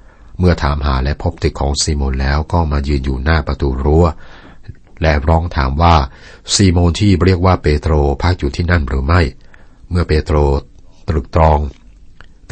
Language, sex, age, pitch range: Thai, male, 60-79, 70-85 Hz